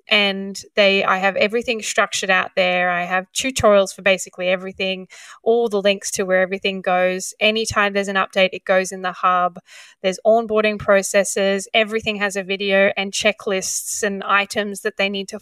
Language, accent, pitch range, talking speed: English, Australian, 195-230 Hz, 175 wpm